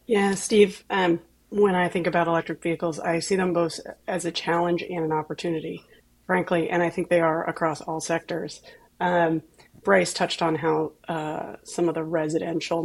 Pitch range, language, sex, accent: 160-185 Hz, English, female, American